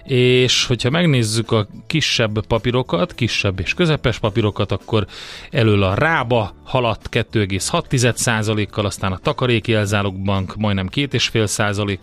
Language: Hungarian